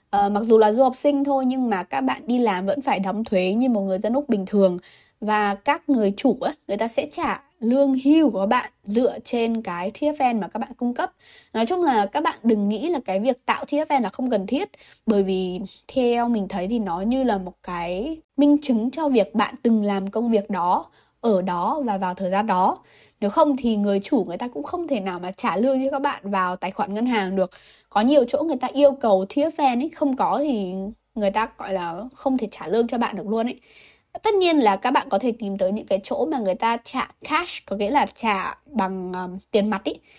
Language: Vietnamese